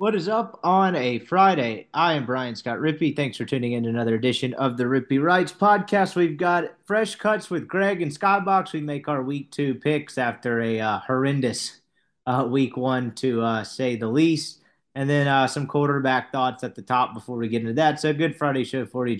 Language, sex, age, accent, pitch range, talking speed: English, male, 30-49, American, 130-185 Hz, 220 wpm